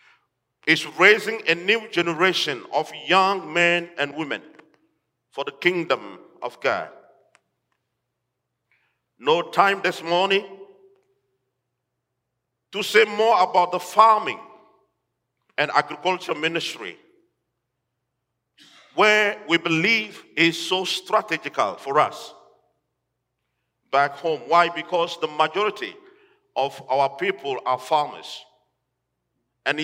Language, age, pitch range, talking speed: English, 50-69, 155-230 Hz, 95 wpm